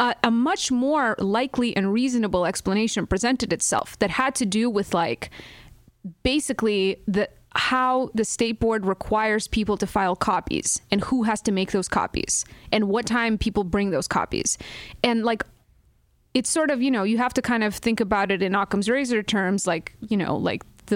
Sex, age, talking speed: female, 20-39, 185 wpm